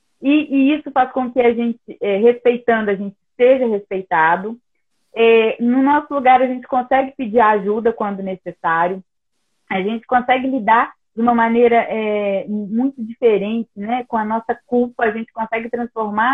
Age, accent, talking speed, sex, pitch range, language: 30-49, Brazilian, 150 wpm, female, 195-245 Hz, Portuguese